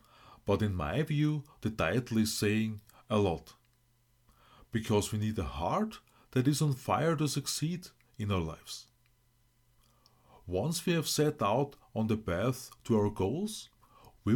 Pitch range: 110-150 Hz